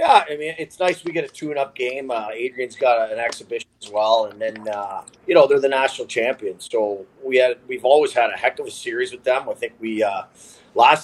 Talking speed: 250 wpm